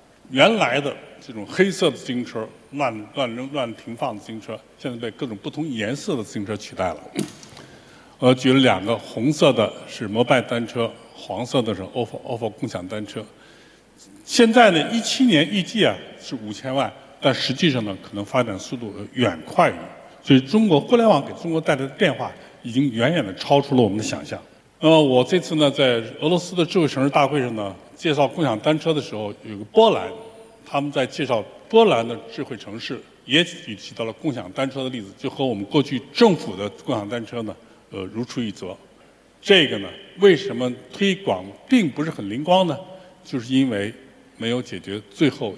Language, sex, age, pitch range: Chinese, male, 50-69, 115-160 Hz